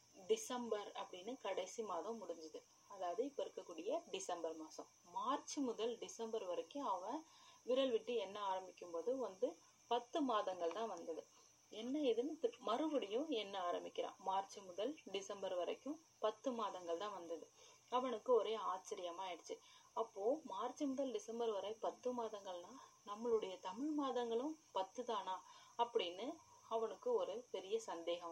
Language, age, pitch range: Tamil, 30-49, 210-335 Hz